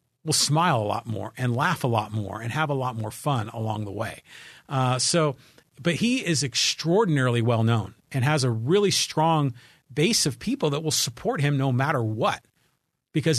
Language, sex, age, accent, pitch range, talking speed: English, male, 50-69, American, 125-160 Hz, 195 wpm